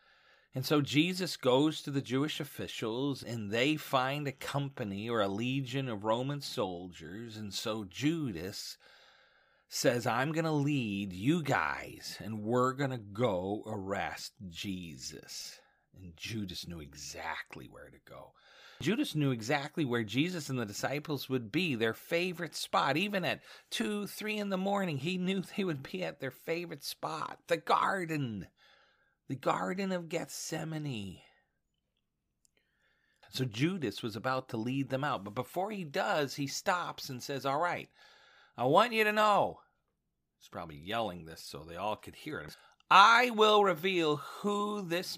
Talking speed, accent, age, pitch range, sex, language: 155 wpm, American, 40-59, 120-170 Hz, male, English